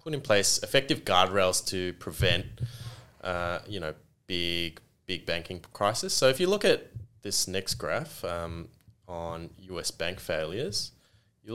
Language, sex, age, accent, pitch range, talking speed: English, male, 20-39, Australian, 85-110 Hz, 145 wpm